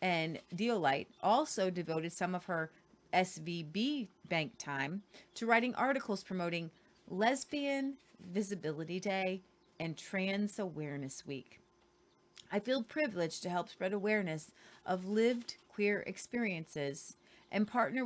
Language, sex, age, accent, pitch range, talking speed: English, female, 30-49, American, 170-225 Hz, 115 wpm